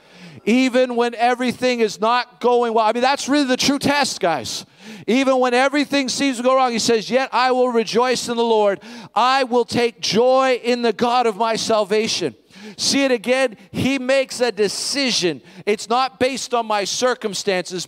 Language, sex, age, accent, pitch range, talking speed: English, male, 40-59, American, 195-245 Hz, 180 wpm